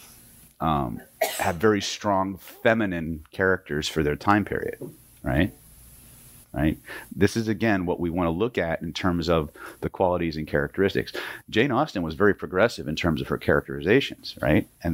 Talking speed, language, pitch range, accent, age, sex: 160 wpm, English, 75-110 Hz, American, 40-59, male